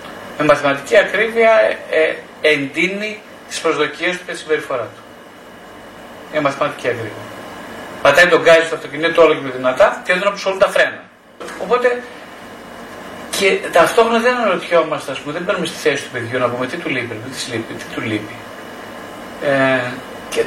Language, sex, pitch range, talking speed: Greek, male, 140-200 Hz, 160 wpm